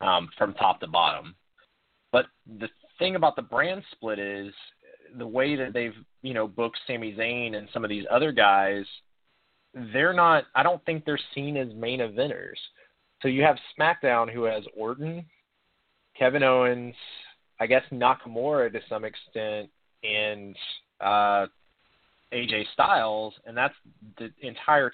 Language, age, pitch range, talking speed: English, 20-39, 105-130 Hz, 145 wpm